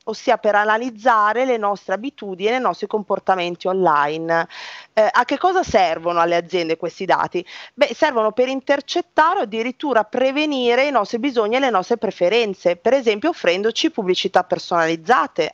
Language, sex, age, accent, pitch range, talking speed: Italian, female, 40-59, native, 180-255 Hz, 150 wpm